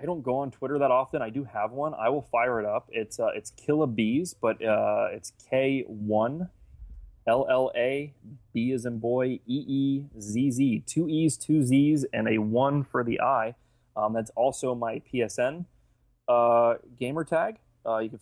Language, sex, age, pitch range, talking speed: English, male, 20-39, 105-130 Hz, 160 wpm